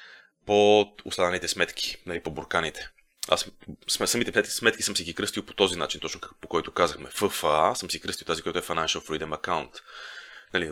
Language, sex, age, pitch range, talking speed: Bulgarian, male, 30-49, 90-110 Hz, 185 wpm